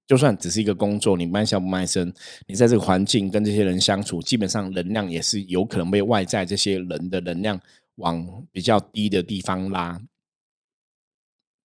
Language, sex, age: Chinese, male, 20-39